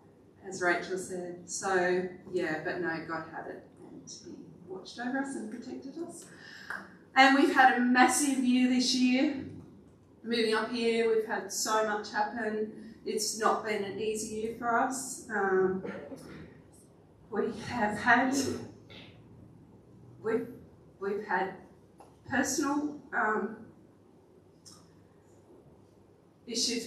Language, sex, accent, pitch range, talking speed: English, female, Australian, 190-275 Hz, 115 wpm